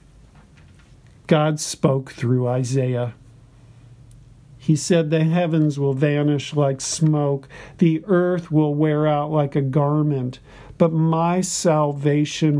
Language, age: English, 50-69